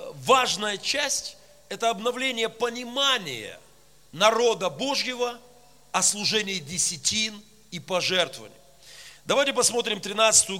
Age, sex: 40-59, male